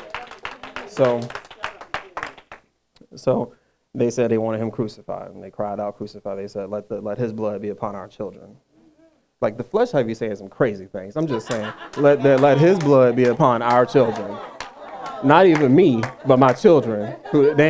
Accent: American